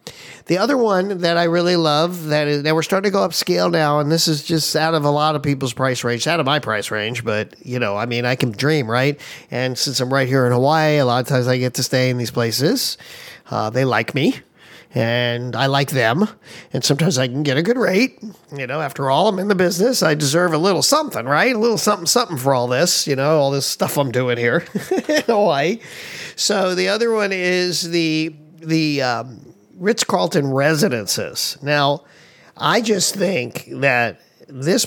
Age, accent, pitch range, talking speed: 40-59, American, 130-180 Hz, 215 wpm